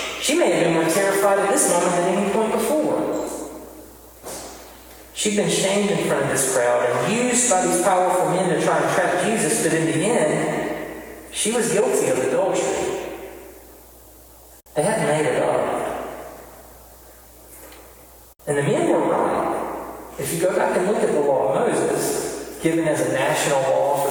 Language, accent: English, American